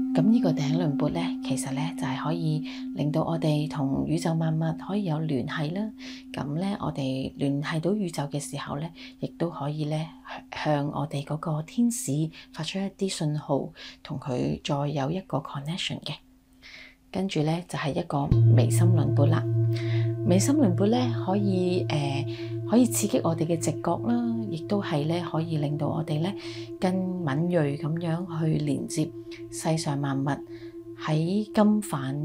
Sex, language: female, Chinese